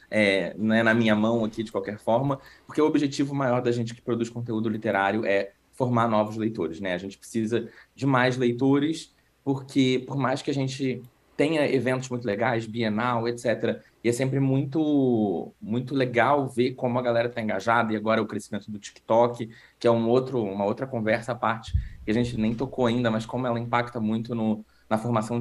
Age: 20-39